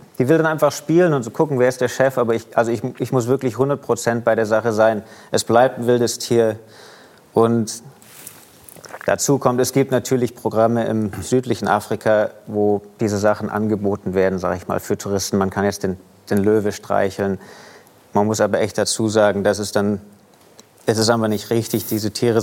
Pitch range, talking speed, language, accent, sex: 105-115 Hz, 195 wpm, German, German, male